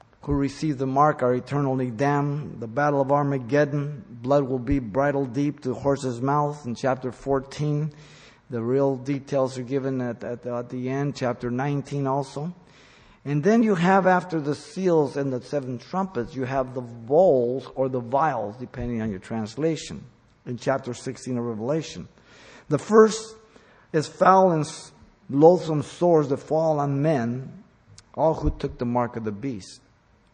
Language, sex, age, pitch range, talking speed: English, male, 50-69, 120-150 Hz, 160 wpm